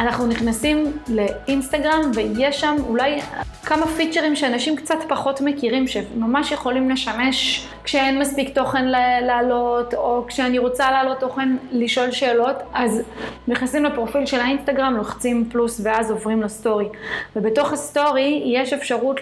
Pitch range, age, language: 230-275 Hz, 20-39, Hebrew